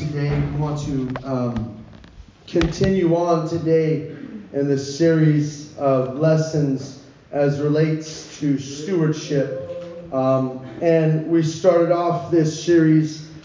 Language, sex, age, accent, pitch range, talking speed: English, male, 30-49, American, 155-170 Hz, 105 wpm